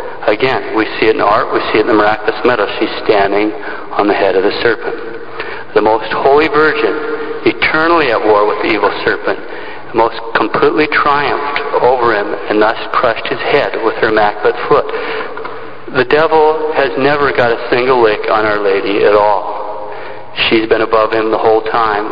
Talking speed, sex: 180 wpm, male